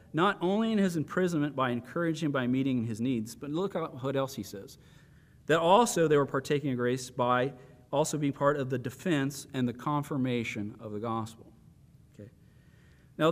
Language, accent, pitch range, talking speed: English, American, 115-155 Hz, 185 wpm